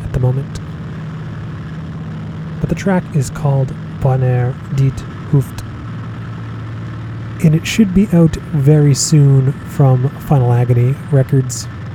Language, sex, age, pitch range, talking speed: English, male, 30-49, 120-150 Hz, 105 wpm